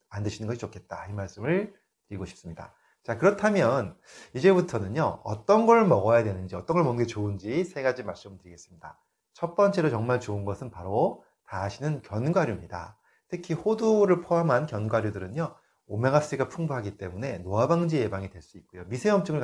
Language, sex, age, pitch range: Korean, male, 30-49, 100-155 Hz